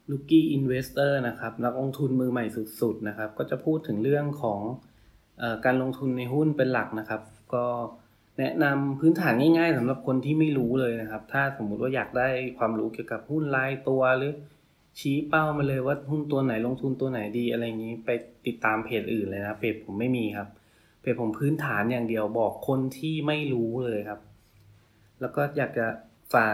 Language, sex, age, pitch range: English, male, 20-39, 110-135 Hz